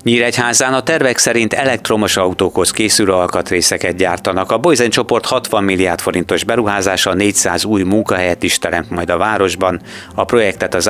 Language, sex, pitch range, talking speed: Hungarian, male, 90-115 Hz, 150 wpm